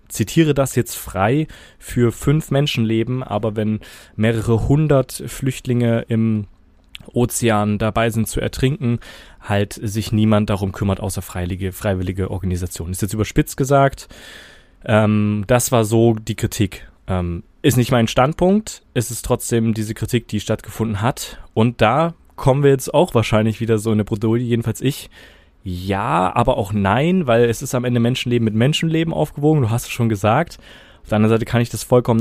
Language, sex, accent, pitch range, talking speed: German, male, German, 100-120 Hz, 170 wpm